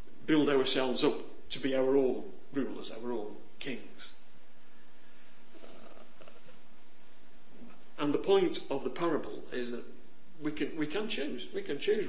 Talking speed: 140 wpm